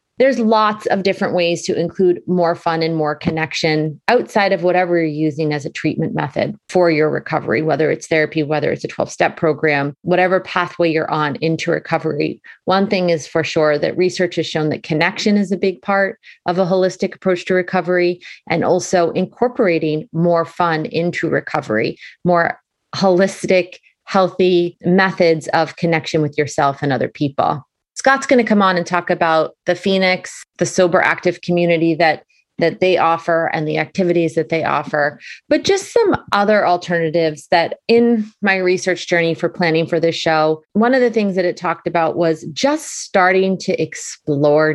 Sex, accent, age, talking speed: female, American, 30-49, 175 wpm